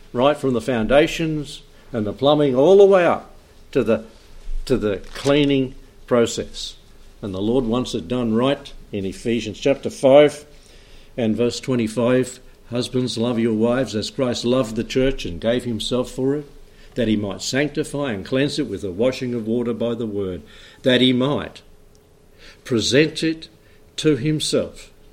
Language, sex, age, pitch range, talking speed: English, male, 60-79, 105-135 Hz, 160 wpm